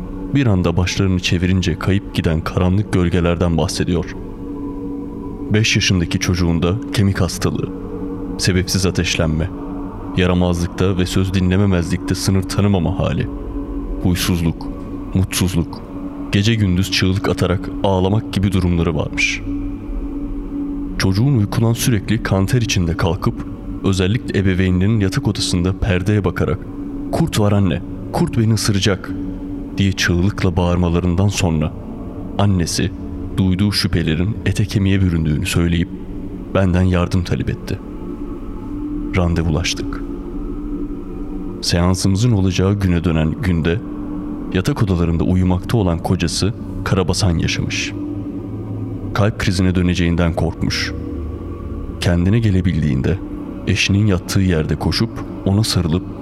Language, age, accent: Turkish, 30-49, native